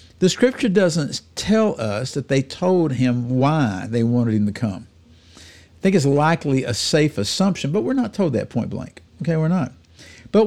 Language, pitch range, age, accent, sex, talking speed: English, 100-155 Hz, 60-79, American, male, 190 wpm